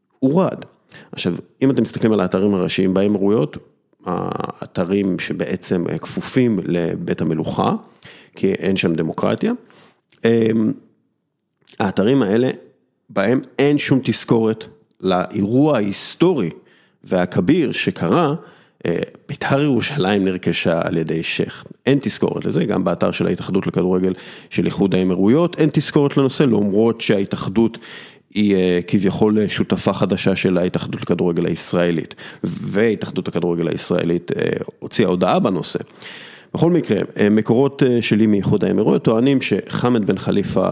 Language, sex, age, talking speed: English, male, 40-59, 95 wpm